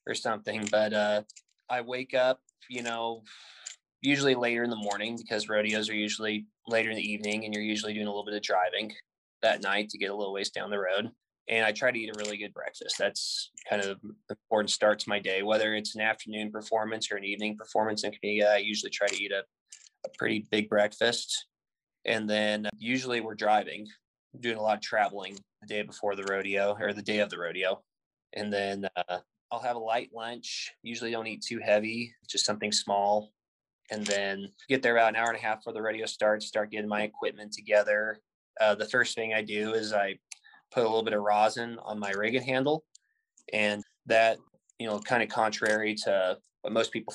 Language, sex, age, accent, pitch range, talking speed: English, male, 20-39, American, 105-115 Hz, 210 wpm